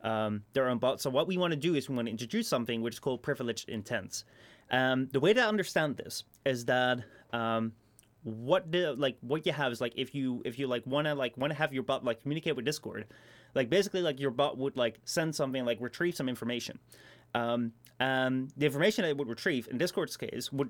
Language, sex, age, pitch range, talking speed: English, male, 30-49, 120-145 Hz, 230 wpm